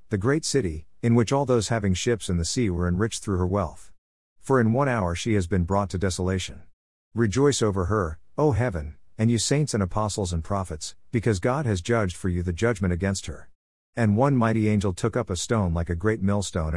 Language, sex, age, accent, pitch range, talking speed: English, male, 50-69, American, 90-115 Hz, 220 wpm